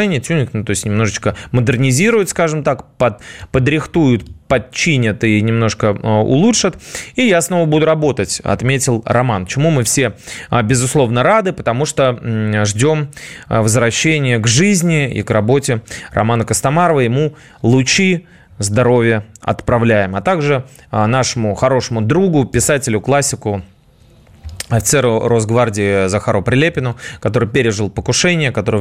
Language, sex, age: Russian, male, 20-39